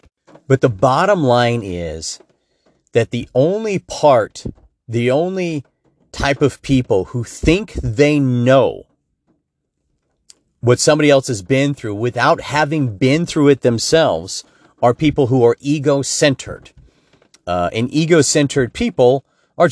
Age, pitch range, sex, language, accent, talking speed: 40-59, 105-140 Hz, male, English, American, 120 wpm